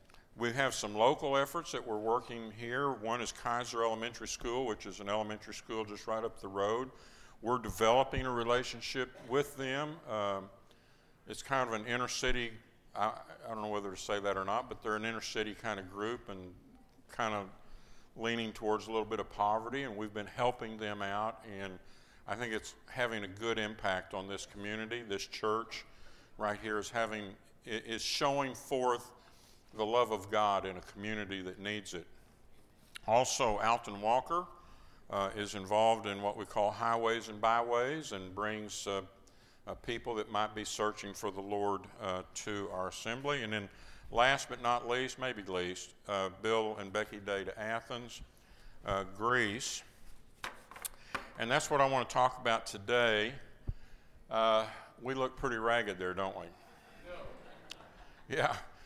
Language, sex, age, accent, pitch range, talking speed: English, male, 50-69, American, 100-120 Hz, 165 wpm